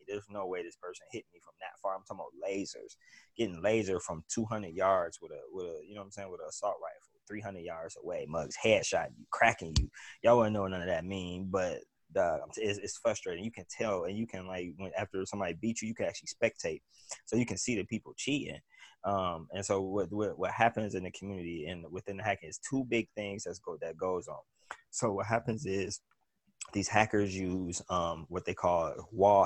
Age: 20-39